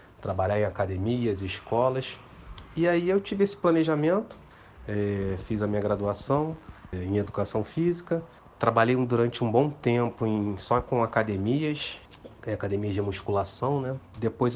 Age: 30-49